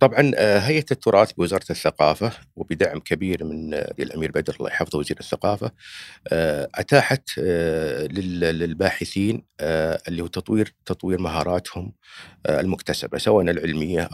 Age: 50-69